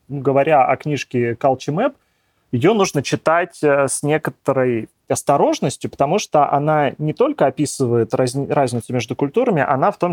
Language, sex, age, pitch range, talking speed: Russian, male, 30-49, 125-165 Hz, 130 wpm